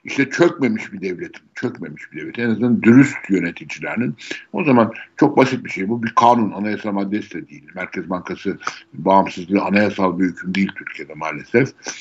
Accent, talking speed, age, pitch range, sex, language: native, 165 wpm, 60-79, 95-120 Hz, male, Turkish